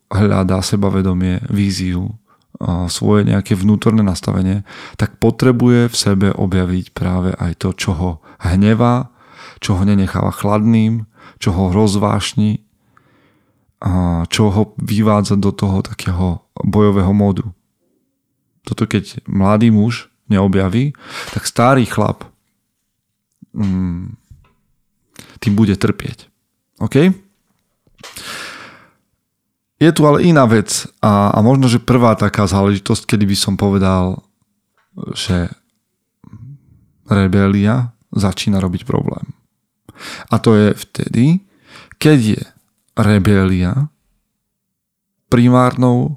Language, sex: Slovak, male